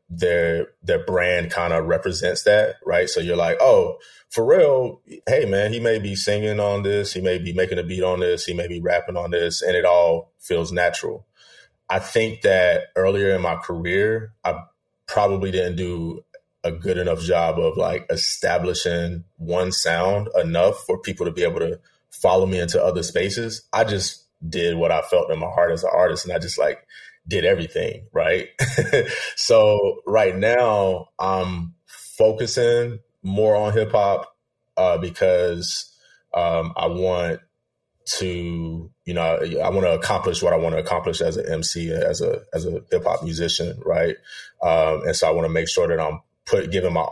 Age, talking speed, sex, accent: 20-39, 180 wpm, male, American